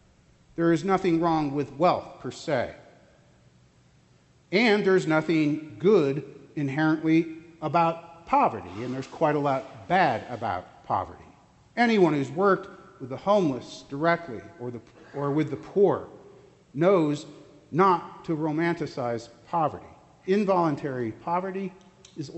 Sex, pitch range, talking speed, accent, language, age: male, 150-200 Hz, 120 wpm, American, English, 50-69